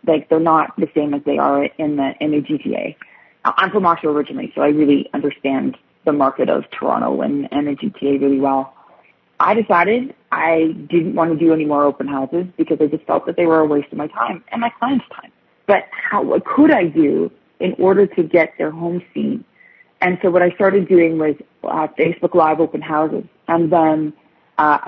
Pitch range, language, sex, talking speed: 150-185 Hz, English, female, 205 wpm